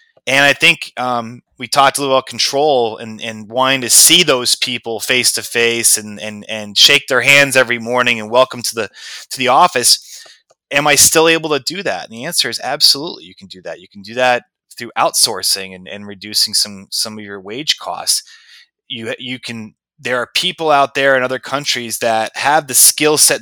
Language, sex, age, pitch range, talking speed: English, male, 20-39, 110-135 Hz, 210 wpm